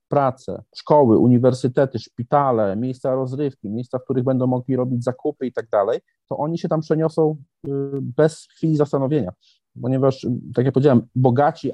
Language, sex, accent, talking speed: Polish, male, native, 150 wpm